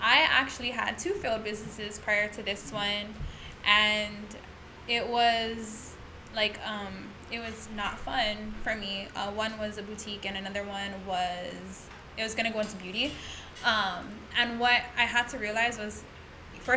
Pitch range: 205-240 Hz